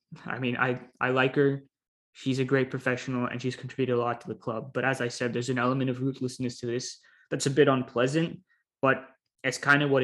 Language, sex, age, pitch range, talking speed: English, male, 20-39, 125-145 Hz, 225 wpm